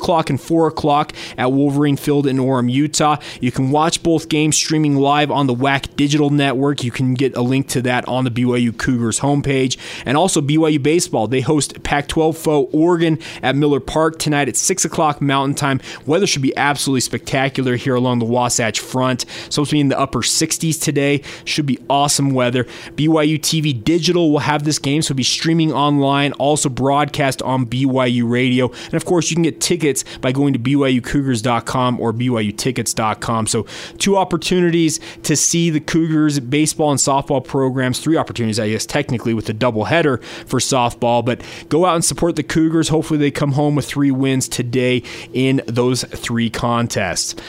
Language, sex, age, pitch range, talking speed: English, male, 20-39, 130-155 Hz, 180 wpm